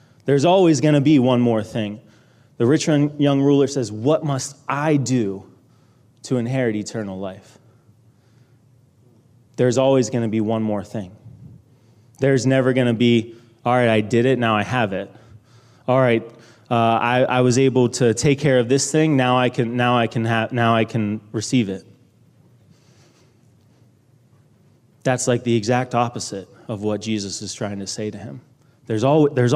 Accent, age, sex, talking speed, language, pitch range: American, 20-39, male, 170 wpm, English, 115-135 Hz